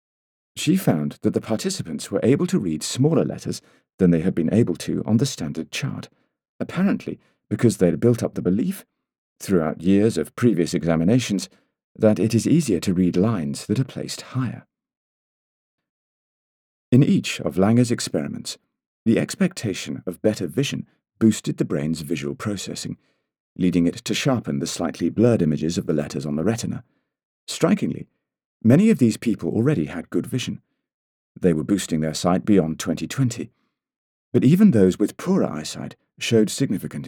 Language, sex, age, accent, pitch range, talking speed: English, male, 40-59, British, 85-115 Hz, 160 wpm